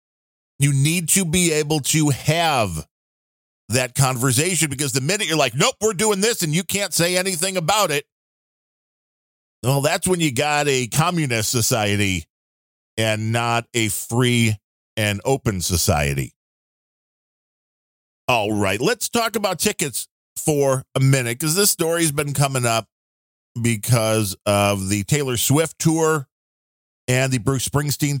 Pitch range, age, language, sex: 110-155 Hz, 40-59, English, male